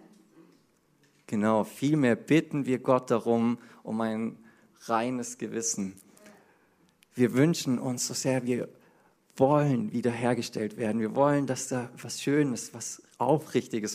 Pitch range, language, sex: 115-140 Hz, German, male